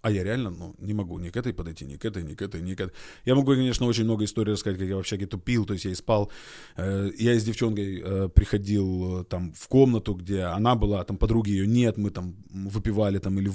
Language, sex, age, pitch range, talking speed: Russian, male, 20-39, 100-140 Hz, 255 wpm